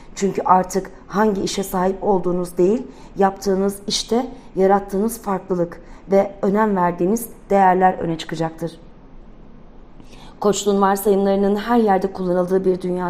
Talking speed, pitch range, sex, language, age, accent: 110 wpm, 175-210 Hz, female, Turkish, 40-59, native